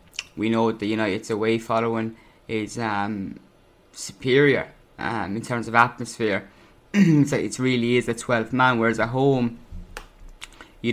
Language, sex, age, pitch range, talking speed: English, male, 20-39, 110-125 Hz, 135 wpm